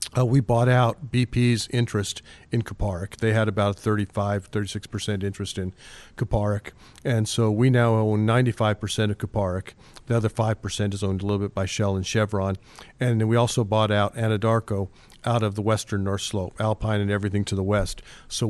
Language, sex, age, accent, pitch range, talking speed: English, male, 50-69, American, 105-115 Hz, 180 wpm